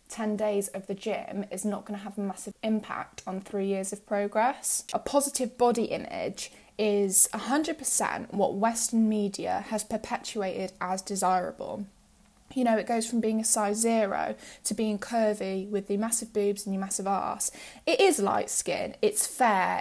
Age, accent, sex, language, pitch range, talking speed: 10-29, British, female, English, 200-245 Hz, 175 wpm